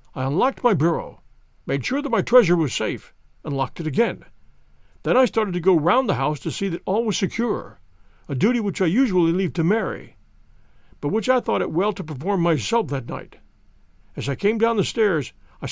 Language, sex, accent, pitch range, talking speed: English, male, American, 140-230 Hz, 210 wpm